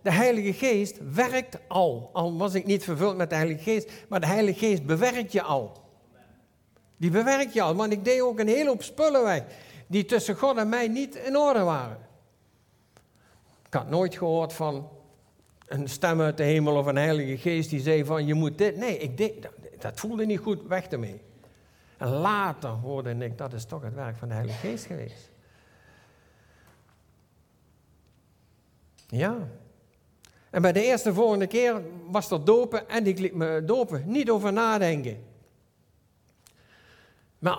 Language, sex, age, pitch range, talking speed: Dutch, male, 60-79, 145-215 Hz, 170 wpm